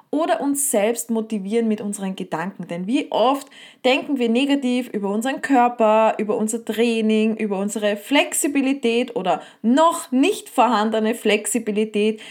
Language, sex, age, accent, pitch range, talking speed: German, female, 20-39, Austrian, 210-270 Hz, 130 wpm